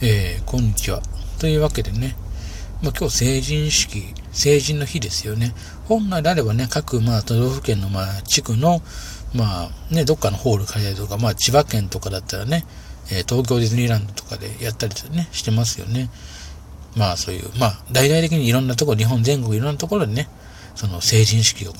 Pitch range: 100-130 Hz